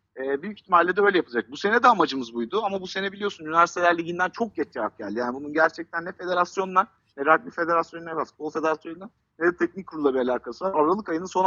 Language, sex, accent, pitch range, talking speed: Turkish, male, native, 145-190 Hz, 205 wpm